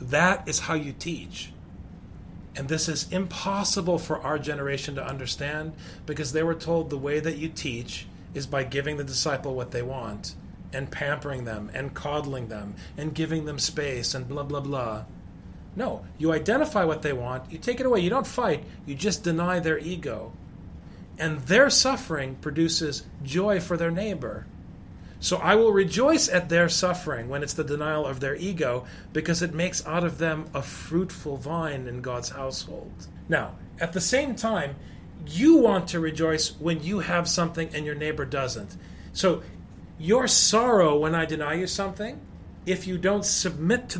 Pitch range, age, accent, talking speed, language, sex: 135-175 Hz, 30-49, American, 175 wpm, English, male